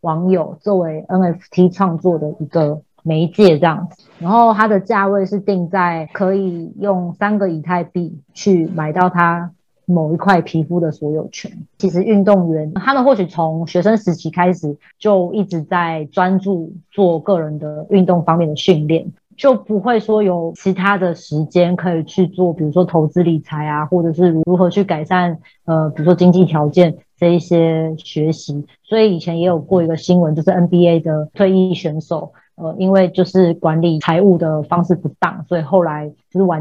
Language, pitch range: Chinese, 160-185 Hz